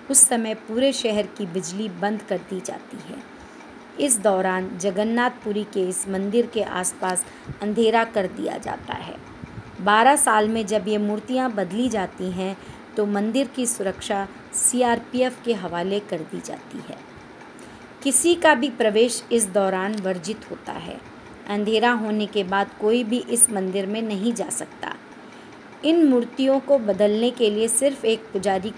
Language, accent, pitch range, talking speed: Hindi, native, 195-235 Hz, 155 wpm